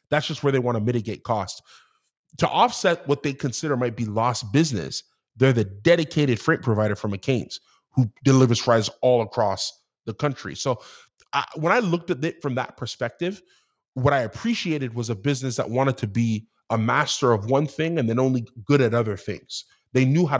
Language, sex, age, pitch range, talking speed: English, male, 20-39, 115-145 Hz, 195 wpm